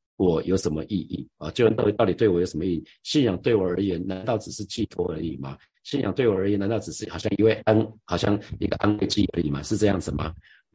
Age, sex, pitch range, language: 50-69, male, 90-110 Hz, Chinese